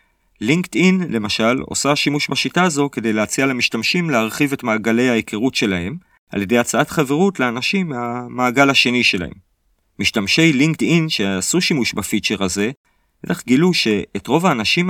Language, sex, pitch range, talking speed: Hebrew, male, 100-145 Hz, 135 wpm